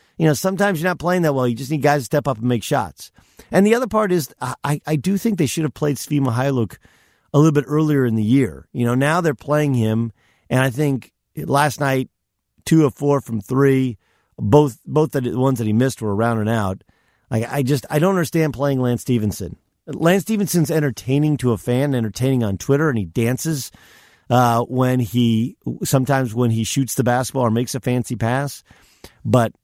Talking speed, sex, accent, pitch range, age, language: 205 wpm, male, American, 115-150 Hz, 50-69, English